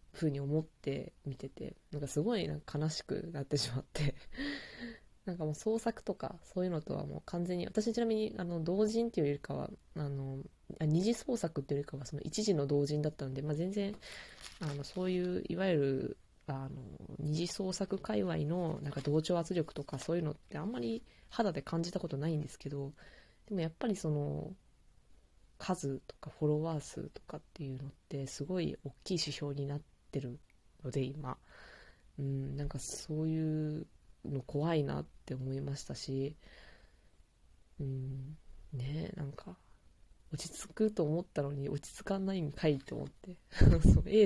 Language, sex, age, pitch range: Japanese, female, 20-39, 135-170 Hz